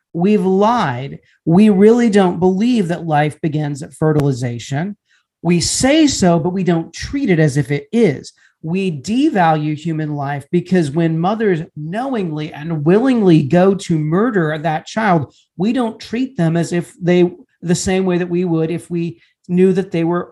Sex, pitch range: male, 155-215 Hz